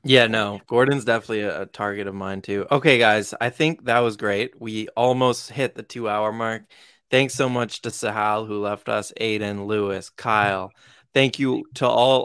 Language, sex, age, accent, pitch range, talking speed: English, male, 20-39, American, 105-120 Hz, 180 wpm